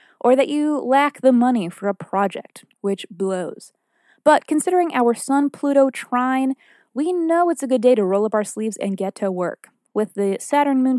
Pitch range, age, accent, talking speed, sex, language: 195-255 Hz, 20-39, American, 185 wpm, female, English